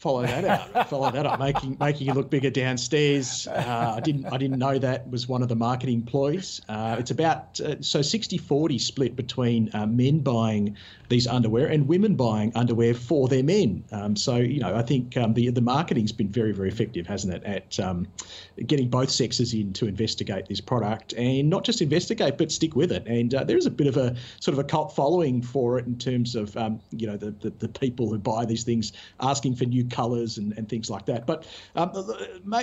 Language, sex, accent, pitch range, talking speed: English, male, Australian, 115-140 Hz, 220 wpm